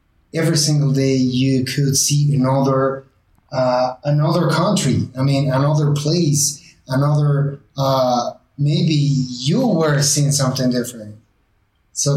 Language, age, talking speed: English, 30-49, 115 wpm